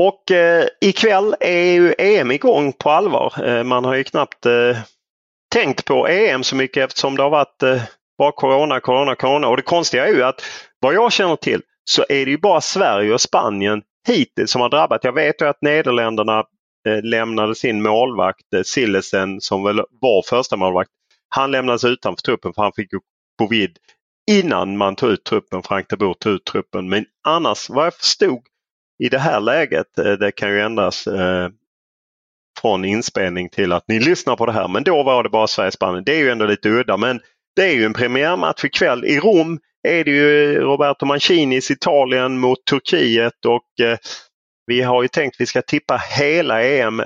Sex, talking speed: male, 190 wpm